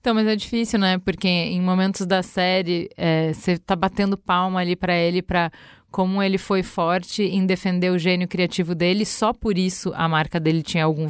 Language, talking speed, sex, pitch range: Portuguese, 200 wpm, female, 185-220 Hz